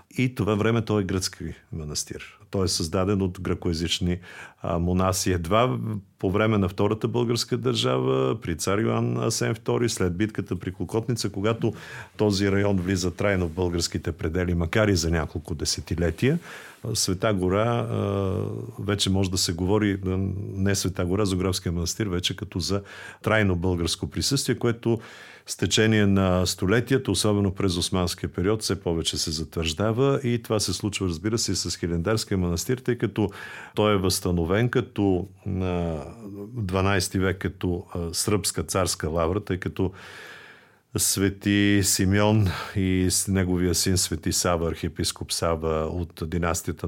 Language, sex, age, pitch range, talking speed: Bulgarian, male, 50-69, 90-110 Hz, 140 wpm